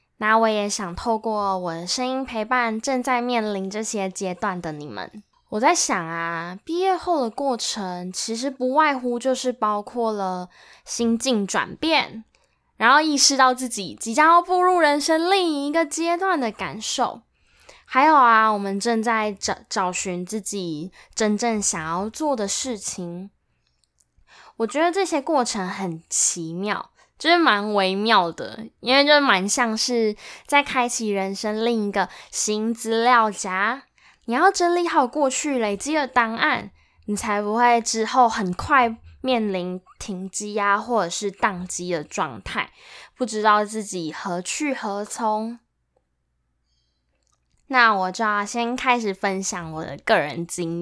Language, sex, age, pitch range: Chinese, female, 10-29, 190-255 Hz